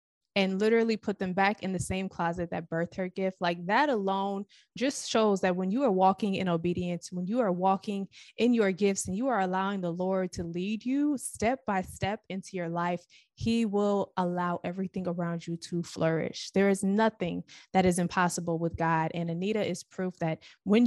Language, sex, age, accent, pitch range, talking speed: English, female, 20-39, American, 180-220 Hz, 200 wpm